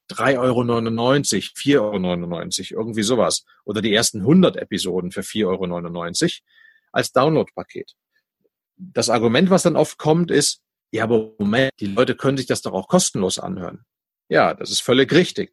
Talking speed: 150 wpm